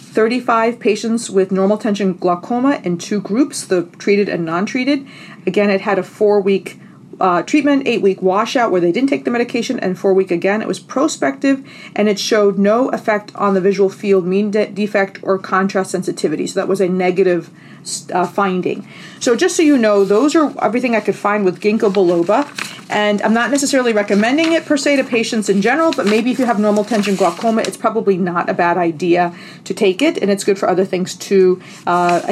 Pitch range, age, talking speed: 185-220 Hz, 40-59, 200 wpm